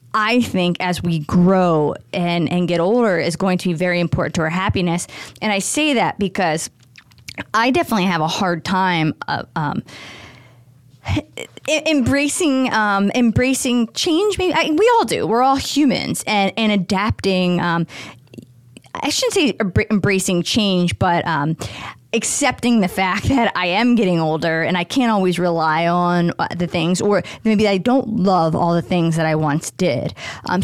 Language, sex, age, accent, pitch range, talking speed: English, female, 20-39, American, 165-205 Hz, 165 wpm